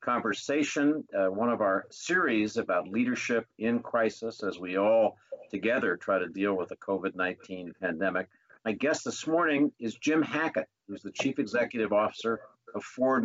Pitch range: 100-130 Hz